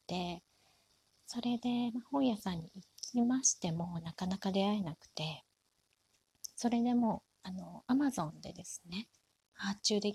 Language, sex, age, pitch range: Japanese, female, 30-49, 165-215 Hz